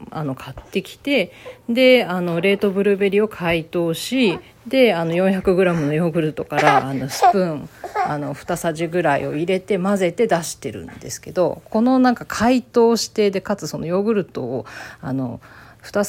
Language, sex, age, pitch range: Japanese, female, 40-59, 160-200 Hz